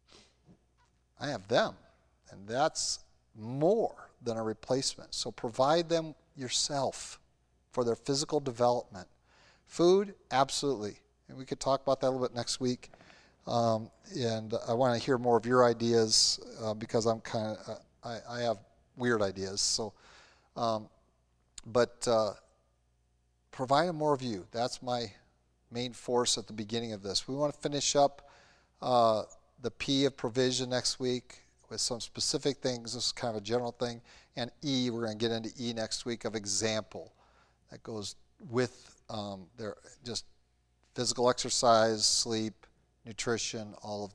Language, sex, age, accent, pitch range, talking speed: English, male, 40-59, American, 105-125 Hz, 160 wpm